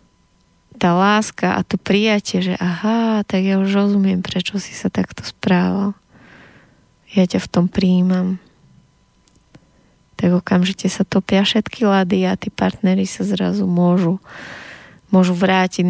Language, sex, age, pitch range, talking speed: Slovak, female, 20-39, 180-195 Hz, 130 wpm